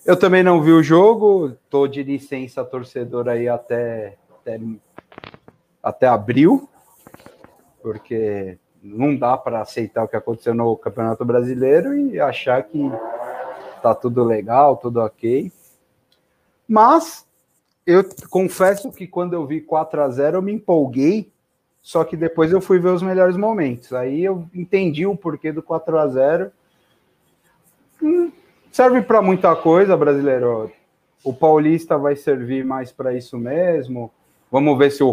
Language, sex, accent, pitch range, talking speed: Portuguese, male, Brazilian, 115-160 Hz, 135 wpm